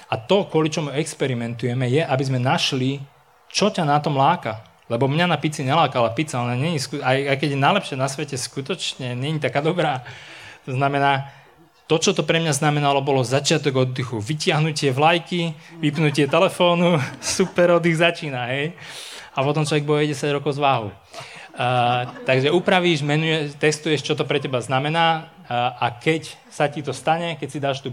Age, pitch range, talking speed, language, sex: 20-39, 130-160 Hz, 165 wpm, Slovak, male